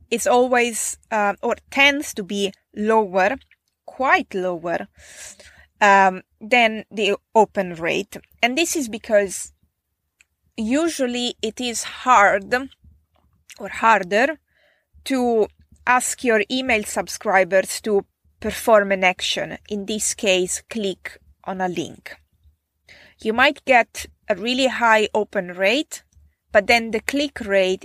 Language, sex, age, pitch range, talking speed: English, female, 20-39, 190-240 Hz, 115 wpm